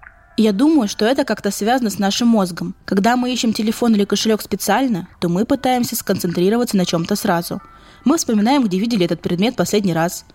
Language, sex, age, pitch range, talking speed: Russian, female, 20-39, 185-235 Hz, 180 wpm